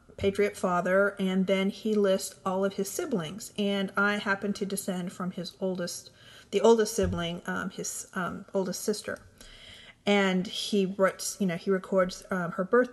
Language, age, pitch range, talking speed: English, 40-59, 185-220 Hz, 165 wpm